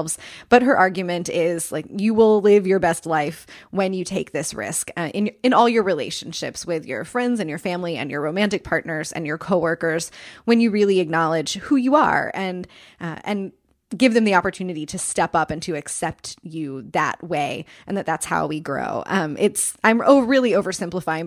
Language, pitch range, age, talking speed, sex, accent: English, 165-210 Hz, 20-39, 200 wpm, female, American